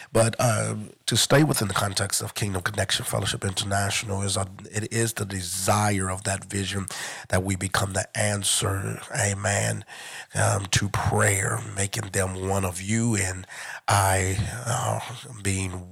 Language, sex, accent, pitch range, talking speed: English, male, American, 95-110 Hz, 145 wpm